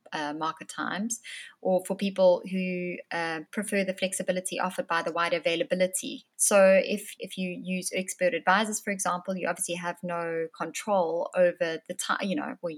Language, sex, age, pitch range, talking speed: English, female, 20-39, 175-195 Hz, 170 wpm